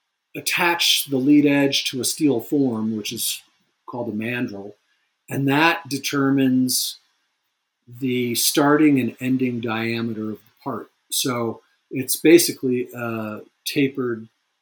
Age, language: 50-69, English